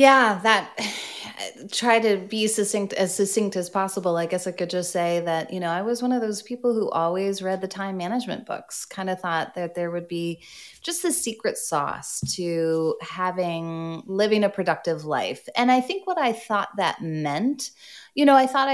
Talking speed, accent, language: 195 wpm, American, English